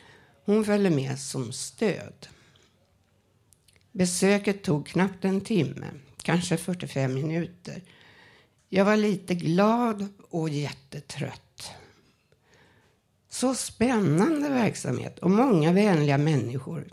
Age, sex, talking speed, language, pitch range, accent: 60-79, female, 90 wpm, Swedish, 140-195 Hz, native